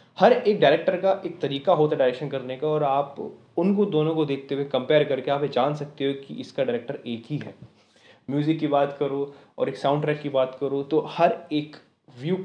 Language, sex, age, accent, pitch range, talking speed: Hindi, male, 20-39, native, 135-160 Hz, 220 wpm